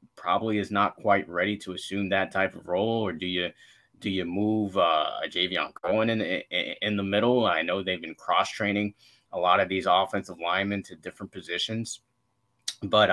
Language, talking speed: English, 180 wpm